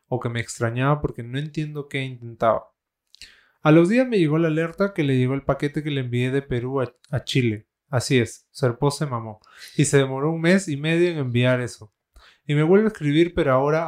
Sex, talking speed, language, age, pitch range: male, 220 wpm, Spanish, 20-39, 125-155 Hz